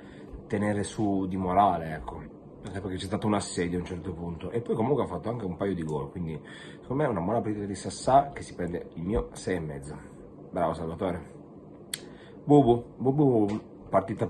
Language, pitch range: Italian, 85-100 Hz